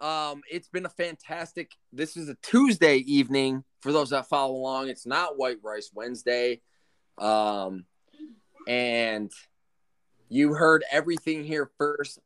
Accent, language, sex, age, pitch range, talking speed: American, English, male, 20-39, 115-145 Hz, 130 wpm